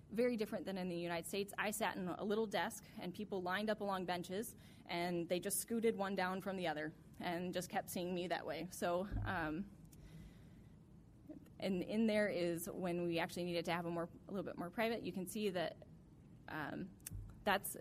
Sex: female